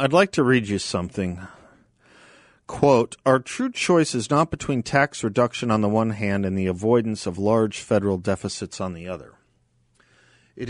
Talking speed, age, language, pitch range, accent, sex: 170 wpm, 50-69, English, 100-140 Hz, American, male